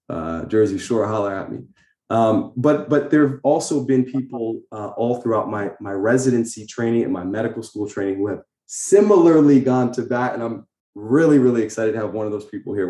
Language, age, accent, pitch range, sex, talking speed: English, 20-39, American, 95-130 Hz, male, 205 wpm